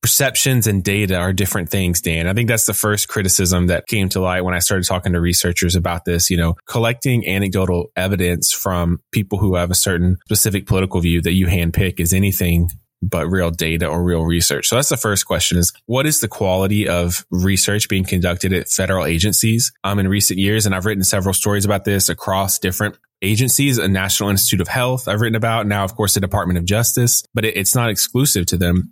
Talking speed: 215 wpm